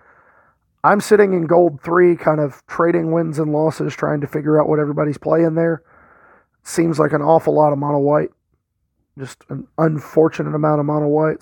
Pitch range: 150-170 Hz